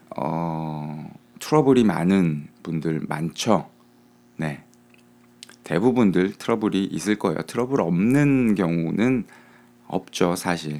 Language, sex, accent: Korean, male, native